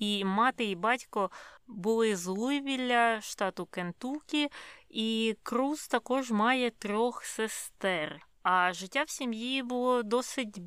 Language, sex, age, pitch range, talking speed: Ukrainian, female, 20-39, 175-220 Hz, 120 wpm